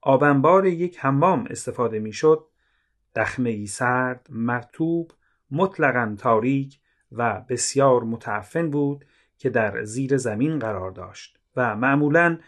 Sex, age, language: male, 30-49, Persian